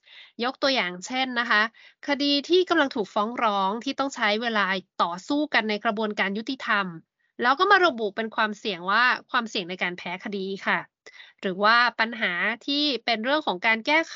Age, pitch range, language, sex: 20-39, 210-280 Hz, Thai, female